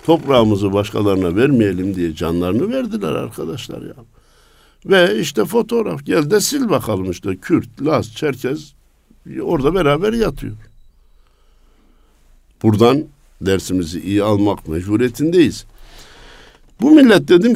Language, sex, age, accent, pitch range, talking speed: Turkish, male, 60-79, native, 90-125 Hz, 100 wpm